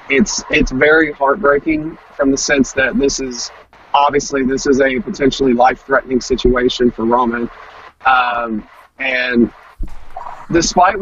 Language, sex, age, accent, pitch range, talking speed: English, male, 30-49, American, 130-150 Hz, 120 wpm